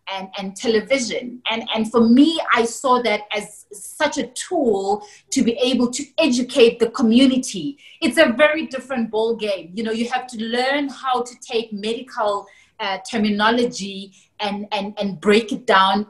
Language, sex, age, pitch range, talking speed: English, female, 30-49, 210-250 Hz, 170 wpm